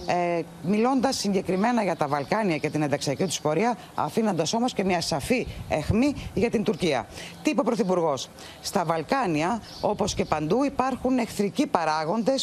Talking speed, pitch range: 150 wpm, 160-250 Hz